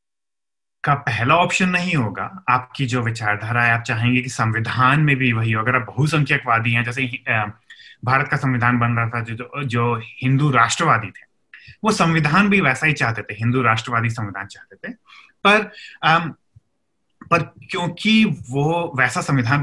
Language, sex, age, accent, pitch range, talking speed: Hindi, male, 30-49, native, 120-165 Hz, 155 wpm